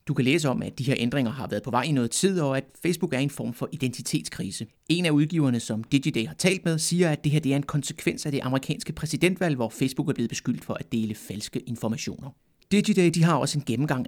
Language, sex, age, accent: Danish, male, 30-49, native